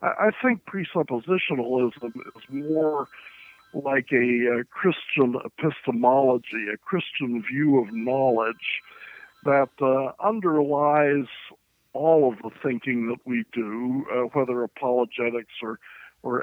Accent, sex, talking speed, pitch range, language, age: American, male, 110 wpm, 120-145 Hz, English, 60-79